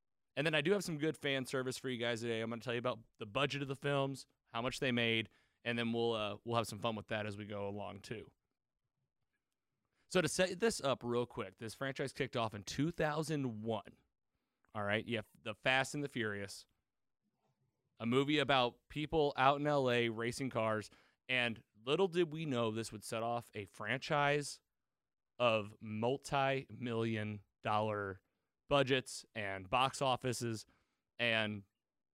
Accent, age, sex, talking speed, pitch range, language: American, 30-49, male, 175 wpm, 110-135 Hz, English